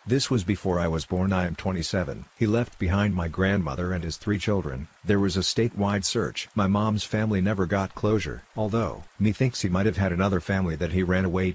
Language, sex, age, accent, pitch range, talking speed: English, male, 50-69, American, 90-105 Hz, 220 wpm